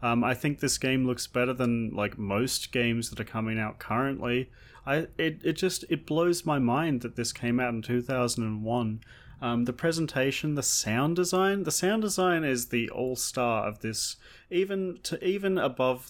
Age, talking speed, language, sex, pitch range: 30-49, 180 wpm, English, male, 115-140 Hz